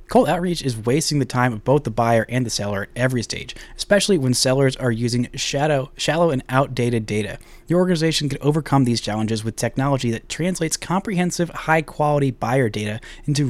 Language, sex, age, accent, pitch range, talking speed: English, male, 20-39, American, 115-150 Hz, 180 wpm